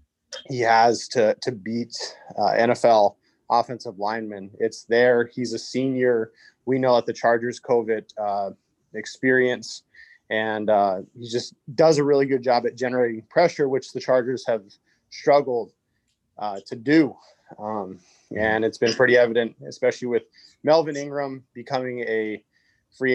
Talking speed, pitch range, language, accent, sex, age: 145 wpm, 110-125 Hz, English, American, male, 30-49